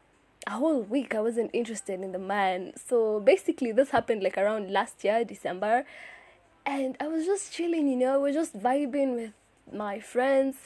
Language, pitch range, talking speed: English, 220-275 Hz, 180 wpm